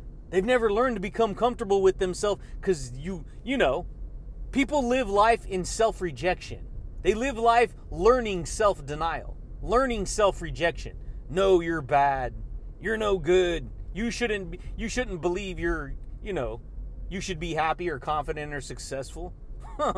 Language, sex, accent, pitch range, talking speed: English, male, American, 155-230 Hz, 135 wpm